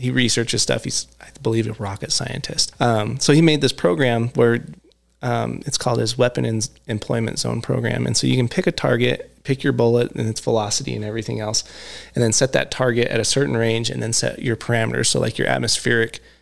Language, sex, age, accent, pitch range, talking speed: English, male, 20-39, American, 110-125 Hz, 215 wpm